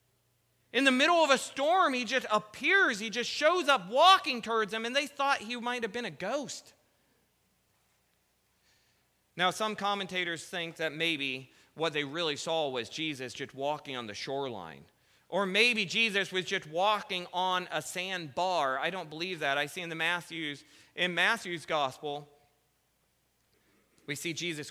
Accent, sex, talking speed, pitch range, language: American, male, 160 wpm, 135-190 Hz, English